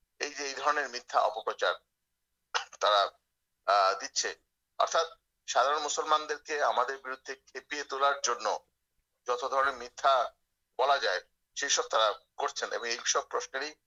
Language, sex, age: Urdu, male, 50-69